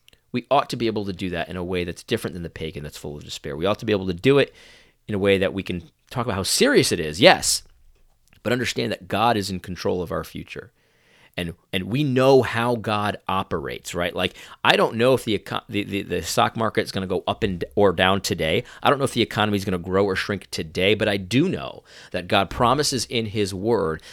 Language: English